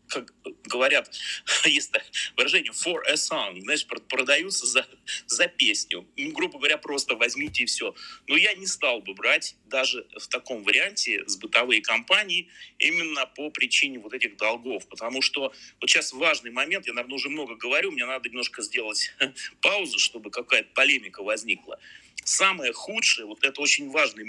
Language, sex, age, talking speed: Russian, male, 30-49, 160 wpm